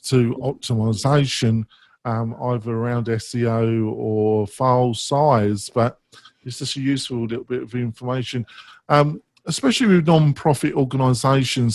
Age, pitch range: 50-69, 120-150 Hz